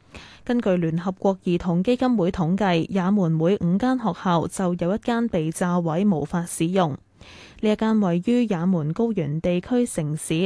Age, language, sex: 10-29, Chinese, female